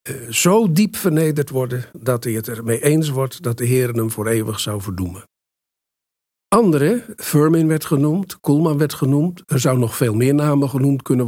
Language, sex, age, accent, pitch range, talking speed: Dutch, male, 50-69, Dutch, 115-150 Hz, 180 wpm